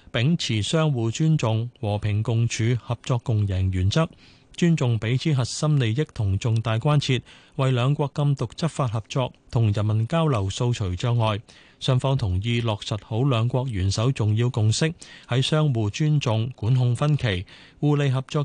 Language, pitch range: Chinese, 105-140 Hz